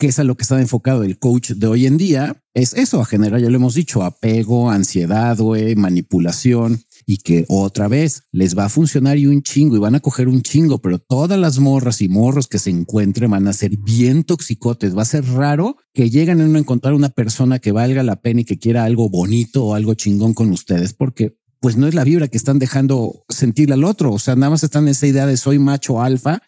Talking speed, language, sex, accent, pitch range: 235 wpm, Spanish, male, Mexican, 105-140 Hz